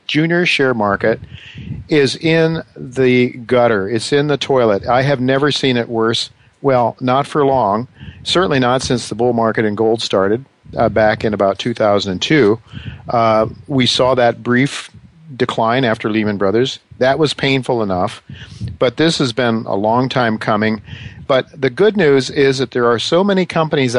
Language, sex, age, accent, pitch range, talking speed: English, male, 50-69, American, 110-135 Hz, 170 wpm